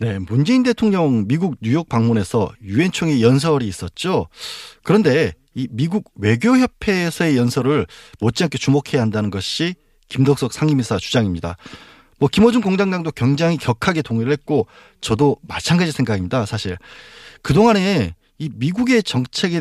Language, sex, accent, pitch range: Korean, male, native, 120-170 Hz